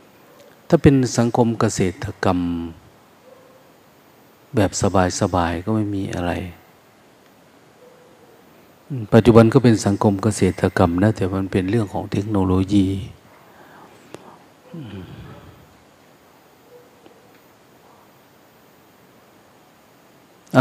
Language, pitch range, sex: Thai, 95-115 Hz, male